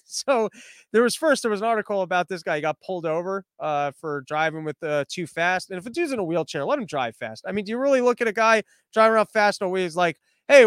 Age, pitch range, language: 20-39, 160-210 Hz, English